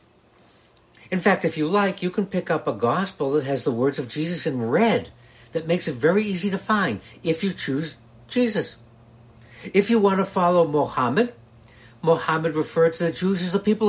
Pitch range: 115-175 Hz